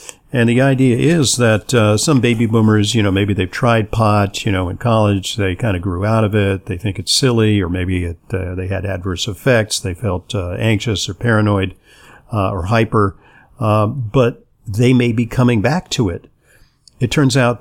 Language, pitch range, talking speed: English, 100-125 Hz, 200 wpm